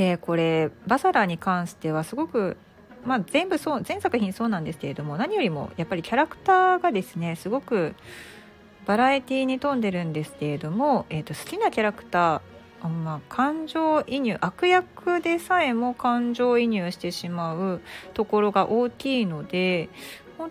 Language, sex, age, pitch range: Japanese, female, 40-59, 170-245 Hz